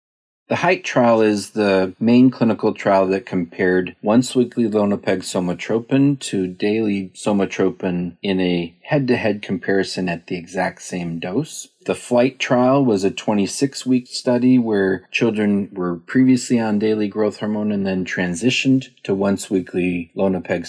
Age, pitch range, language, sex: 40-59, 90-120 Hz, English, male